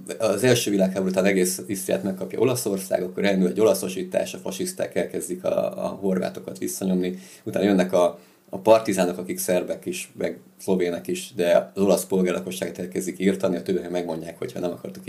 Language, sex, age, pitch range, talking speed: Hungarian, male, 30-49, 90-100 Hz, 165 wpm